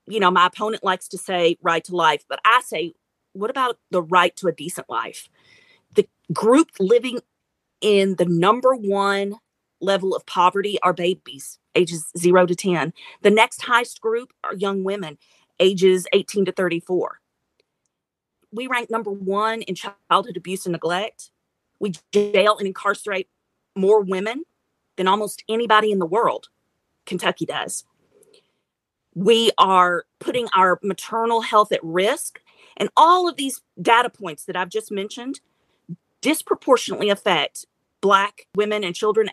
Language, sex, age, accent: English, female, 40-59, American